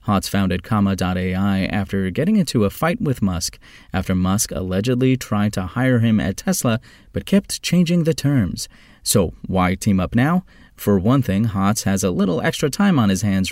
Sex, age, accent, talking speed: male, 30-49, American, 180 wpm